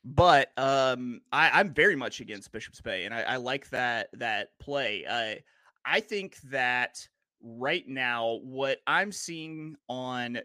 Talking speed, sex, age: 150 wpm, male, 30-49